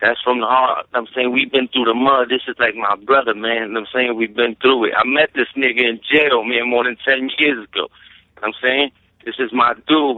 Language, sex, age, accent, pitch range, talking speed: English, male, 60-79, American, 130-165 Hz, 240 wpm